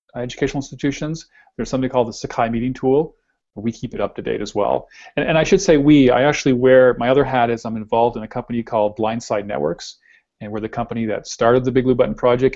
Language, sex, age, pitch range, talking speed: English, male, 40-59, 110-130 Hz, 235 wpm